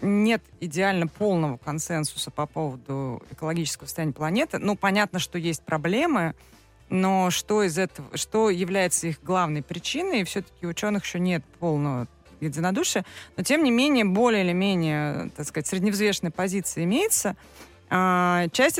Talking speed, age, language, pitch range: 135 wpm, 30-49, Russian, 160-200 Hz